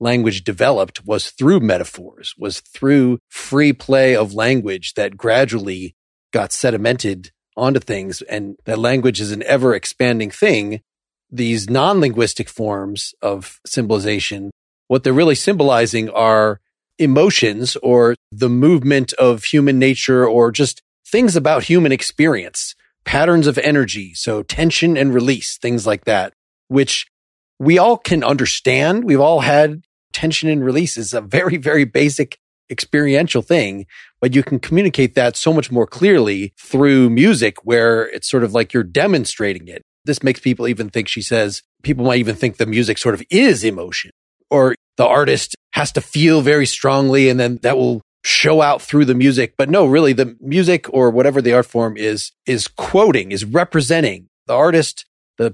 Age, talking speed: 40-59, 160 wpm